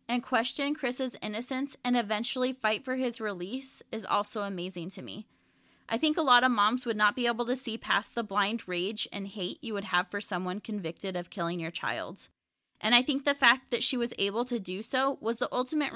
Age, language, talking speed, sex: 20-39, English, 220 wpm, female